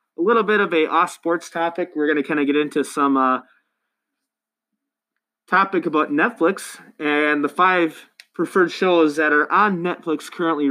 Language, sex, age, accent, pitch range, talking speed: English, male, 20-39, American, 150-195 Hz, 160 wpm